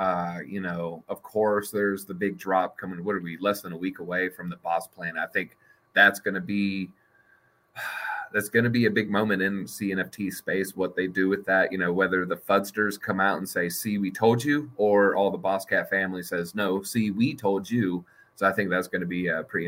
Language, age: English, 30-49